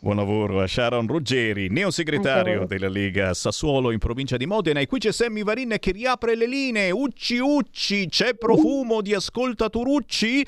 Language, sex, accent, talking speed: Italian, male, native, 170 wpm